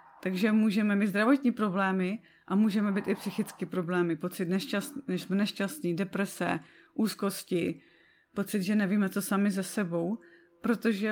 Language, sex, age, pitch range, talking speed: Czech, female, 30-49, 175-205 Hz, 125 wpm